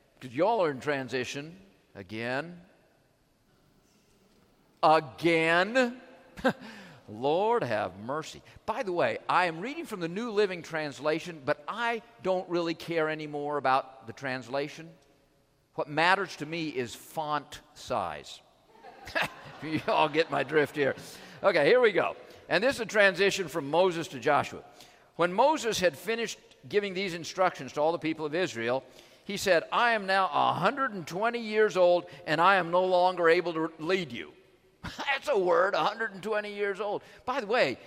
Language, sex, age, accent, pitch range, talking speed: English, male, 50-69, American, 155-200 Hz, 150 wpm